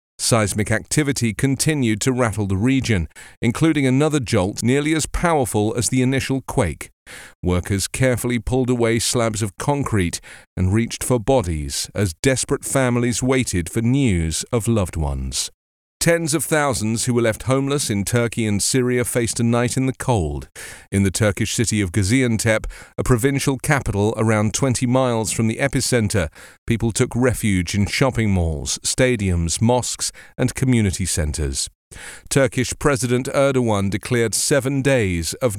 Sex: male